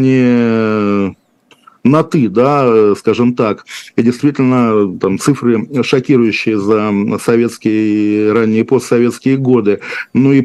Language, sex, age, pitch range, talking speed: Russian, male, 50-69, 115-135 Hz, 105 wpm